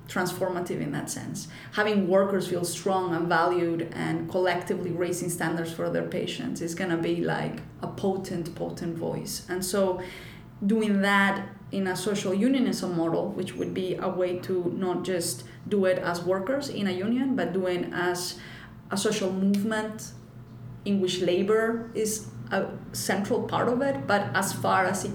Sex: female